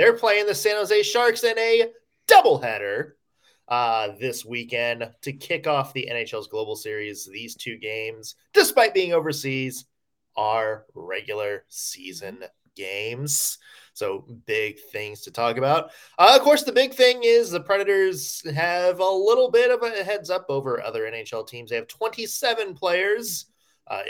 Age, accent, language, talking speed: 20-39, American, English, 150 wpm